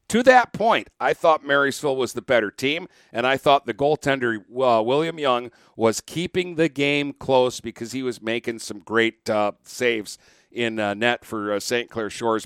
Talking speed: 190 wpm